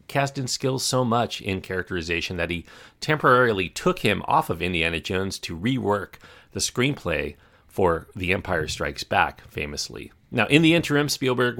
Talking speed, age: 155 wpm, 40-59